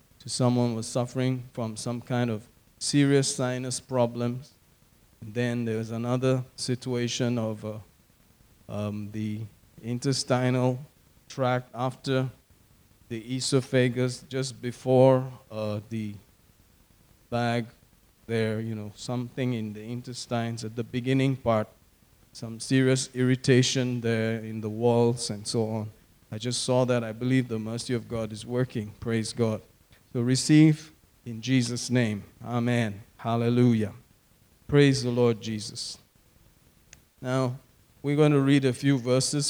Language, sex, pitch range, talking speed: English, male, 110-130 Hz, 130 wpm